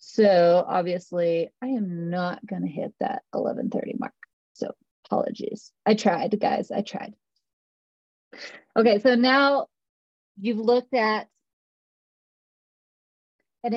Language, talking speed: English, 105 wpm